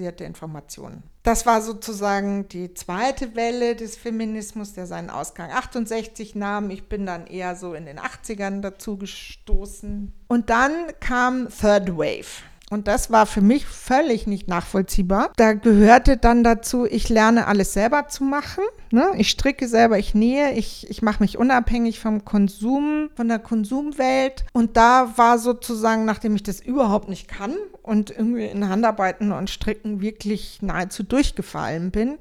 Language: German